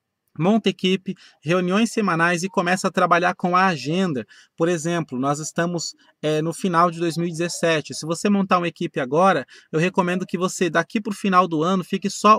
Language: Portuguese